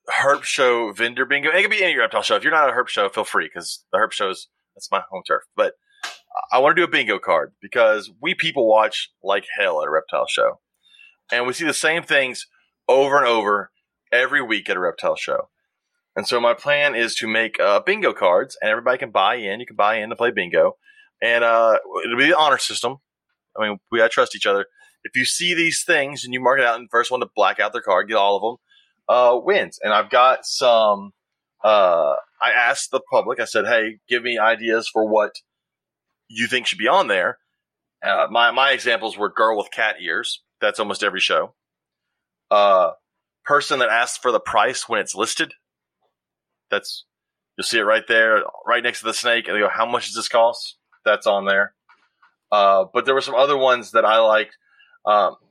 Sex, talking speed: male, 220 wpm